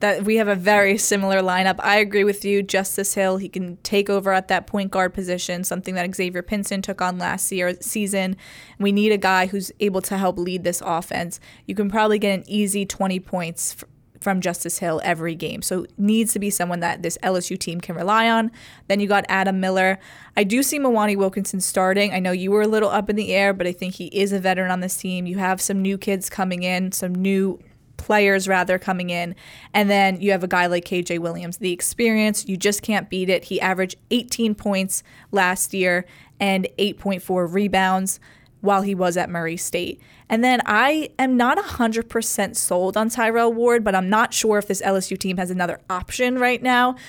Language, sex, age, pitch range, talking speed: English, female, 20-39, 185-210 Hz, 215 wpm